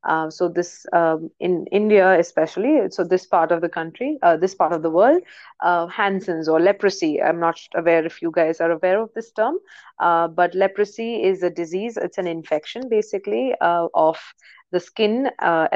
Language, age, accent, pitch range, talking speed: English, 30-49, Indian, 165-195 Hz, 185 wpm